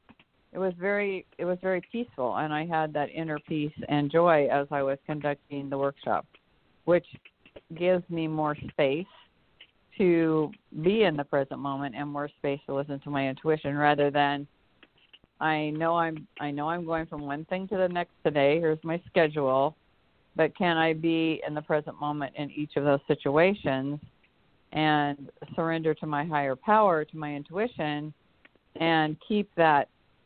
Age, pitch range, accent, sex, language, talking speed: 50-69, 145-165 Hz, American, female, English, 165 wpm